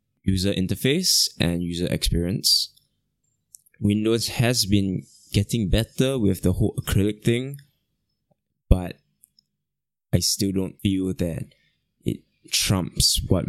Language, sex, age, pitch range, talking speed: English, male, 20-39, 90-110 Hz, 105 wpm